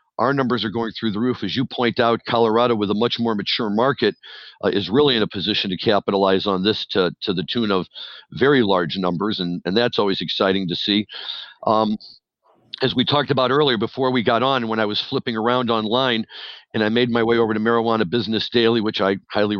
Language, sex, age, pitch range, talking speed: English, male, 50-69, 105-125 Hz, 220 wpm